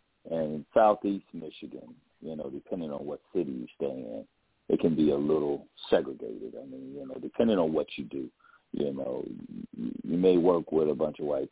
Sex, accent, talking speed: male, American, 195 wpm